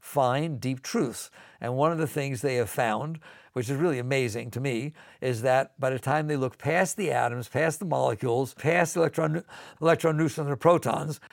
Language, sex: English, male